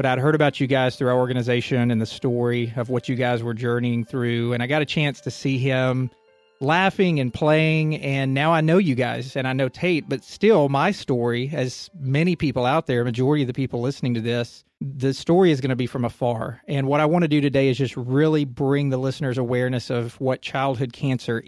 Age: 40-59